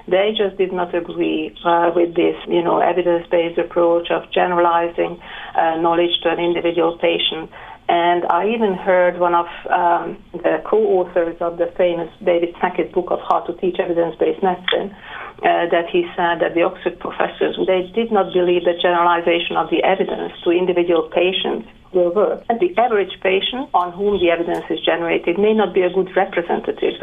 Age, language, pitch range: 40-59, English, 175-210 Hz